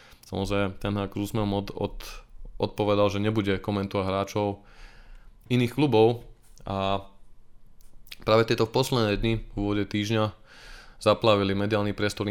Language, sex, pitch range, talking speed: Slovak, male, 100-110 Hz, 115 wpm